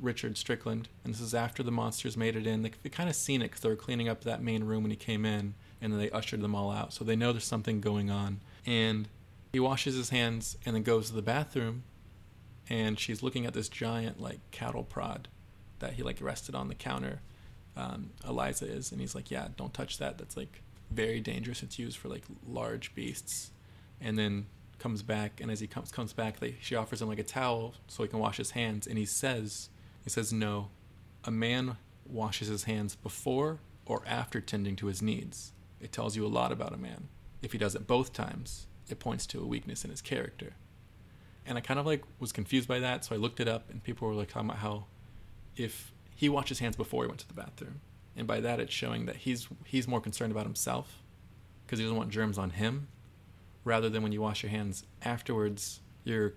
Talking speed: 225 wpm